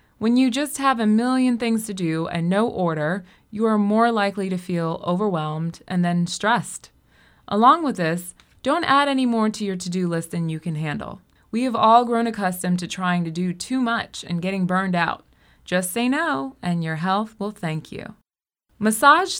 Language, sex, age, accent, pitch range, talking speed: English, female, 20-39, American, 180-235 Hz, 195 wpm